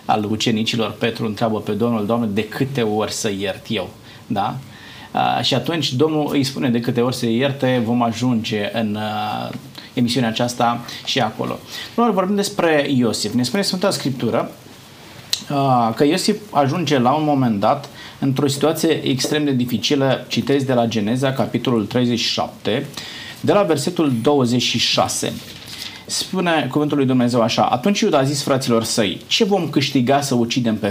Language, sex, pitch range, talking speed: Romanian, male, 115-150 Hz, 150 wpm